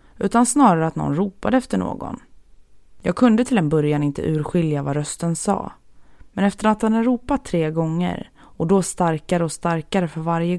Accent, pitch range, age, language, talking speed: native, 150-185 Hz, 20-39, Swedish, 180 wpm